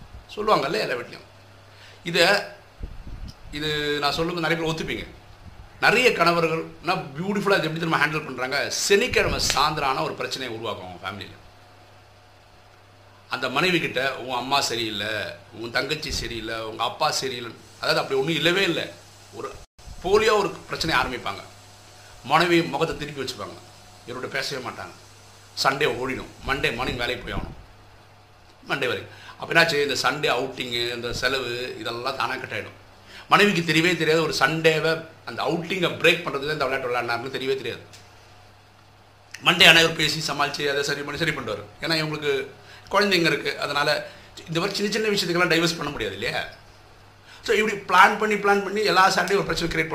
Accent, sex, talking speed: native, male, 140 wpm